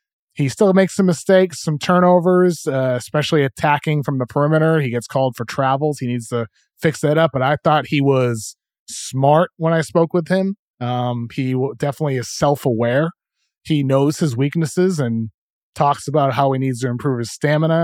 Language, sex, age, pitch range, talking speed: English, male, 20-39, 125-150 Hz, 180 wpm